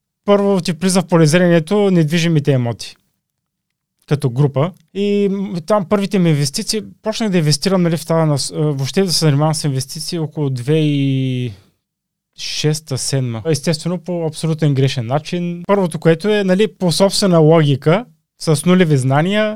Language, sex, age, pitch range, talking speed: Bulgarian, male, 20-39, 145-185 Hz, 140 wpm